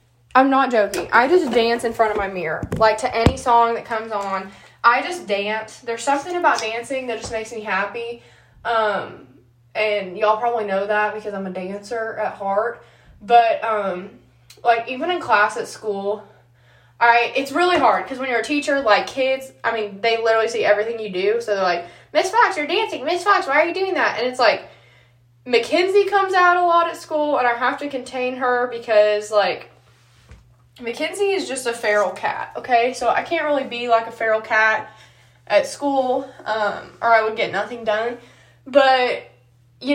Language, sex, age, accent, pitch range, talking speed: English, female, 20-39, American, 210-270 Hz, 190 wpm